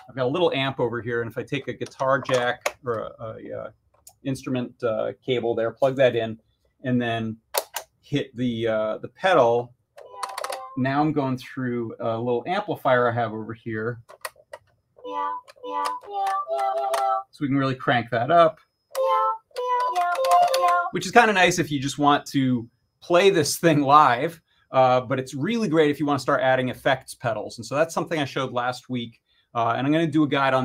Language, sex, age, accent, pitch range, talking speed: English, male, 30-49, American, 120-155 Hz, 185 wpm